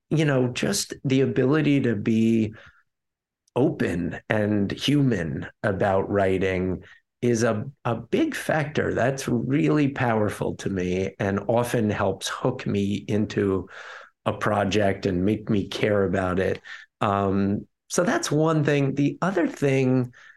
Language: English